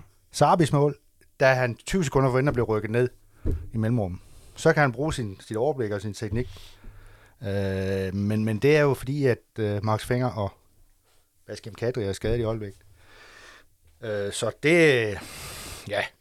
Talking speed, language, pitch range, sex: 165 wpm, Danish, 100-130 Hz, male